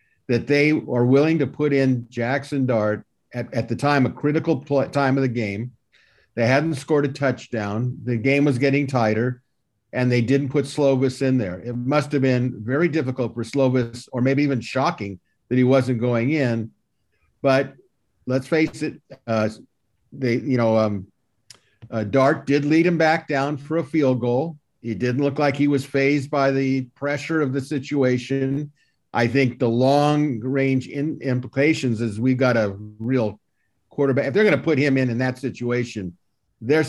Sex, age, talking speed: male, 50-69, 175 wpm